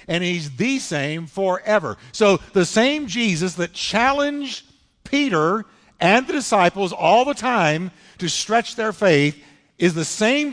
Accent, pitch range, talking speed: American, 140-205 Hz, 140 wpm